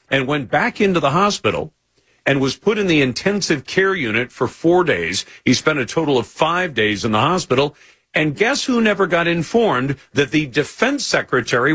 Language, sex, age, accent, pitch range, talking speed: English, male, 50-69, American, 125-165 Hz, 190 wpm